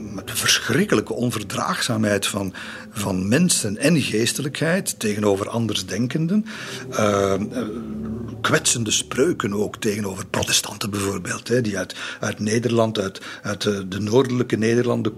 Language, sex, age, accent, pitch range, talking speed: Dutch, male, 50-69, Belgian, 110-145 Hz, 110 wpm